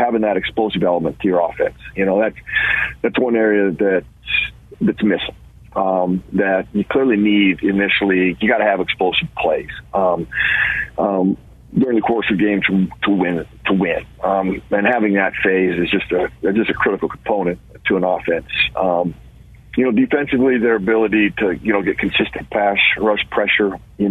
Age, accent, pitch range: 40-59, American, 95-110 Hz